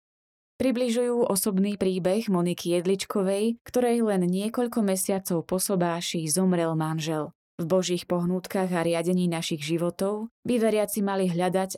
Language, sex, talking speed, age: Slovak, female, 120 wpm, 20-39